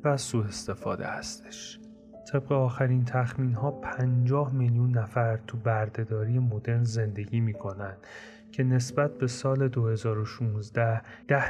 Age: 30-49